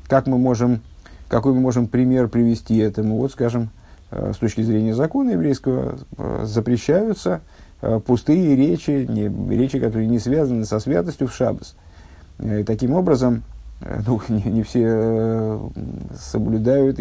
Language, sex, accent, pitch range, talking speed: Russian, male, native, 110-130 Hz, 120 wpm